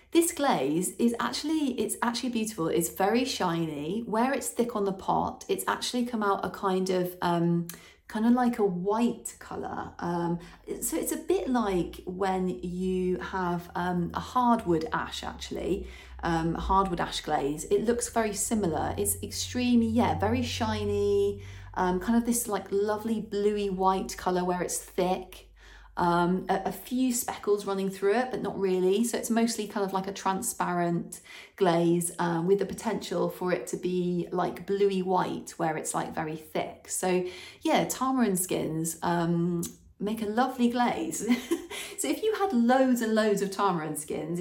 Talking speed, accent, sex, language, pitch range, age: 165 wpm, British, female, English, 175-220 Hz, 30-49